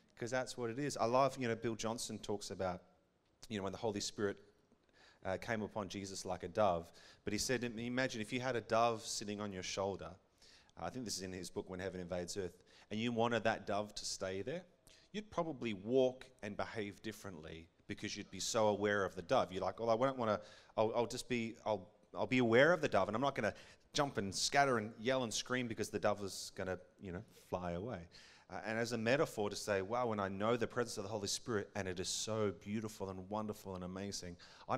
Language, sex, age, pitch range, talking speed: English, male, 30-49, 95-115 Hz, 240 wpm